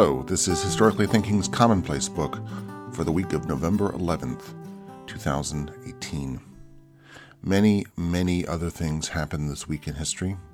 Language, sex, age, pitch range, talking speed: English, male, 40-59, 80-100 Hz, 130 wpm